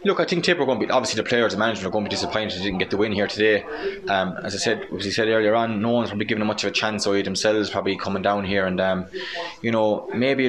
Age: 20-39